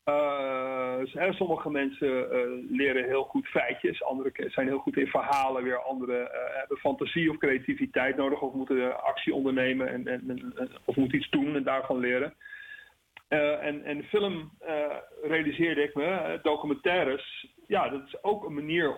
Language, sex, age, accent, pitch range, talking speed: Dutch, male, 40-59, Dutch, 130-185 Hz, 165 wpm